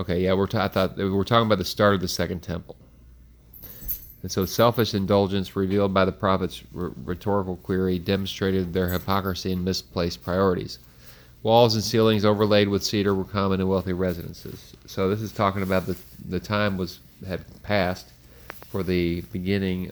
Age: 40-59